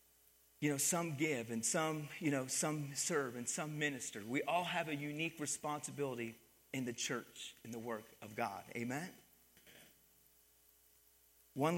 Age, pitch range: 40-59, 120-170 Hz